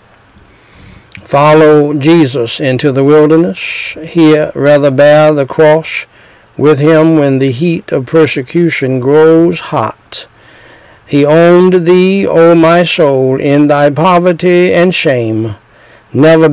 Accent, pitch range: American, 125-160 Hz